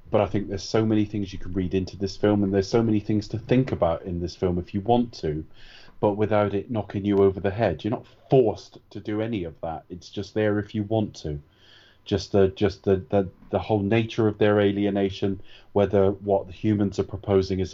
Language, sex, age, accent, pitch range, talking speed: English, male, 30-49, British, 95-110 Hz, 235 wpm